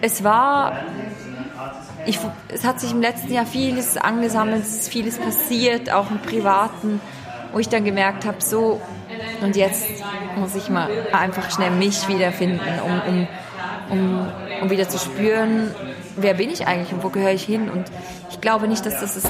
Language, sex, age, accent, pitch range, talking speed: German, female, 20-39, German, 185-220 Hz, 170 wpm